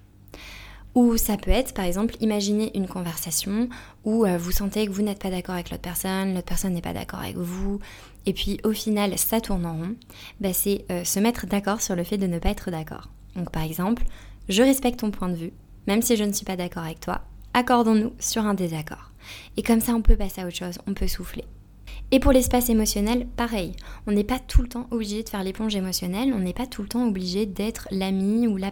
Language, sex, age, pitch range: French, female, 20-39, 185-225 Hz